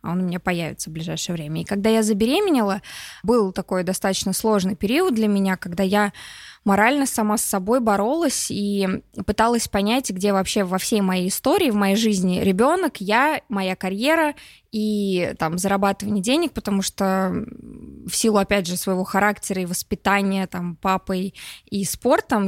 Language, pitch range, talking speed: Russian, 195-235 Hz, 150 wpm